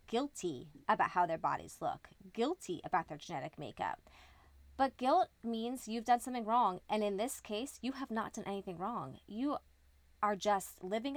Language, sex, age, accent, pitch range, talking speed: English, female, 20-39, American, 180-230 Hz, 170 wpm